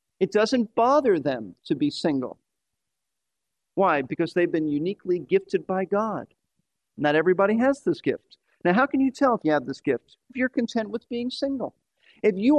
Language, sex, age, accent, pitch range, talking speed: English, male, 50-69, American, 185-265 Hz, 180 wpm